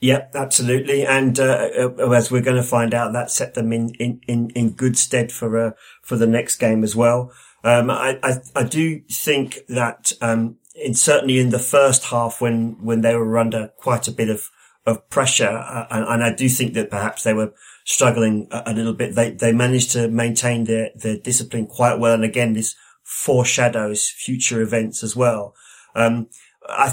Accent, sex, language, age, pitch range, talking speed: British, male, English, 40-59, 110-125 Hz, 190 wpm